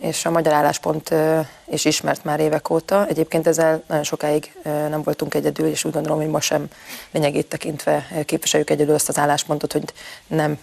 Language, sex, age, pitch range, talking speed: Hungarian, female, 30-49, 150-165 Hz, 175 wpm